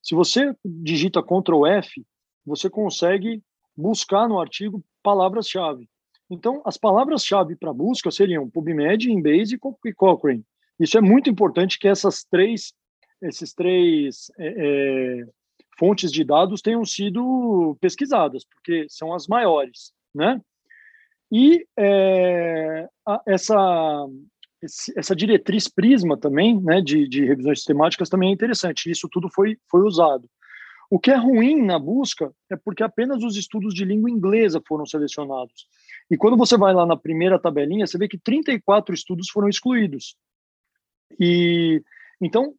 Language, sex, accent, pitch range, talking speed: Portuguese, male, Brazilian, 165-220 Hz, 130 wpm